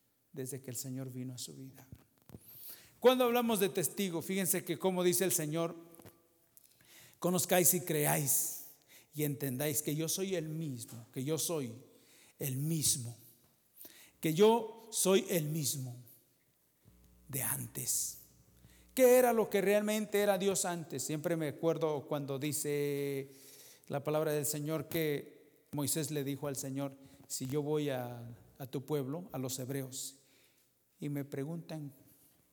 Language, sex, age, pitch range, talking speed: English, male, 50-69, 120-155 Hz, 140 wpm